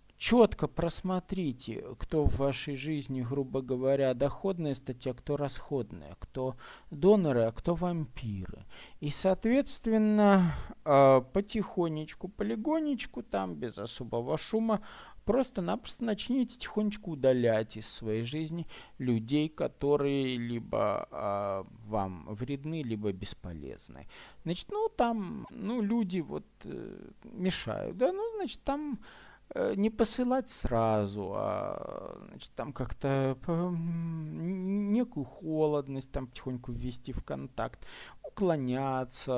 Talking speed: 100 wpm